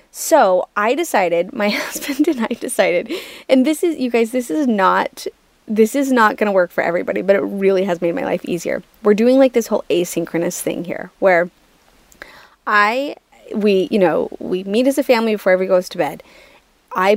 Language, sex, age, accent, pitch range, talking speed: English, female, 20-39, American, 180-255 Hz, 190 wpm